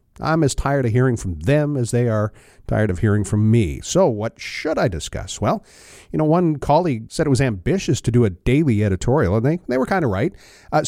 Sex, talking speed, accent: male, 230 wpm, American